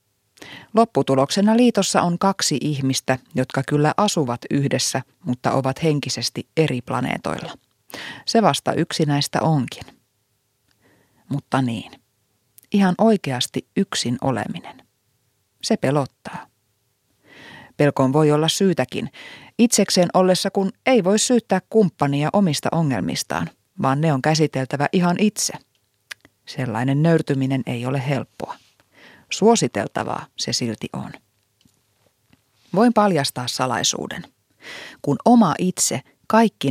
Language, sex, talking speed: Finnish, female, 100 wpm